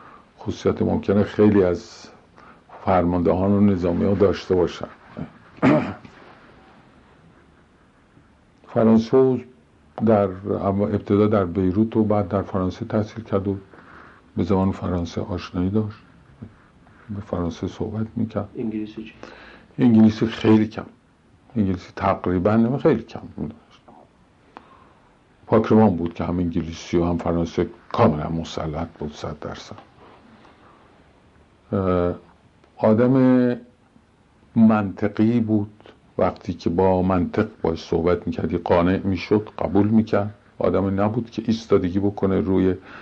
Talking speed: 100 wpm